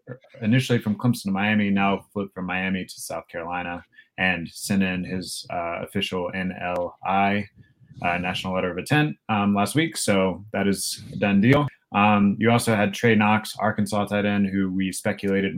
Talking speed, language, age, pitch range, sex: 175 wpm, English, 20-39, 95-110 Hz, male